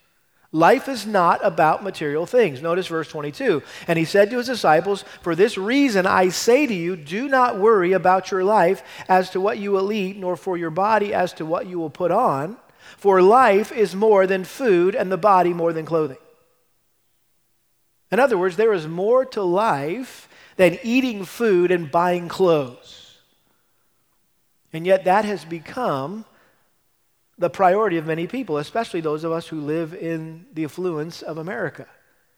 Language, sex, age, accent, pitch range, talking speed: English, male, 40-59, American, 165-200 Hz, 170 wpm